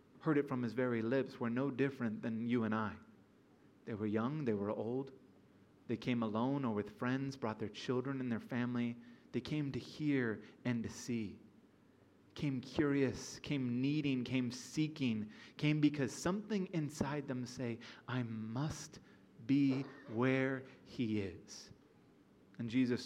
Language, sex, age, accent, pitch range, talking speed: English, male, 30-49, American, 110-135 Hz, 150 wpm